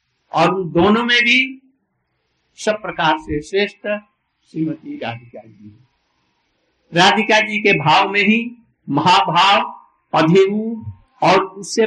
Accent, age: native, 60-79